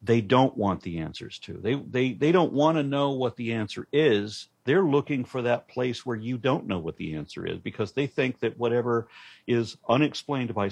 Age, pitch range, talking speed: 50-69, 100-125 Hz, 215 wpm